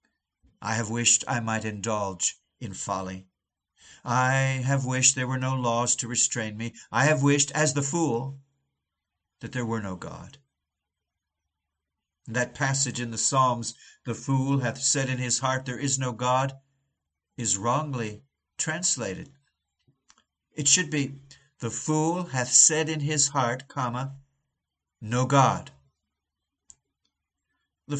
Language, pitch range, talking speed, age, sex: English, 95-145 Hz, 135 wpm, 60-79, male